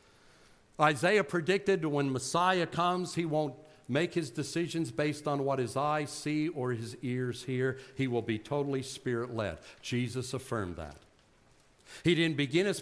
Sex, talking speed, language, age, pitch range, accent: male, 155 wpm, English, 60-79, 125-165 Hz, American